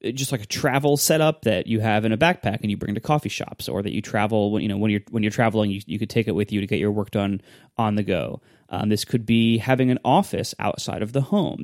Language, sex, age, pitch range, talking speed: English, male, 20-39, 105-135 Hz, 285 wpm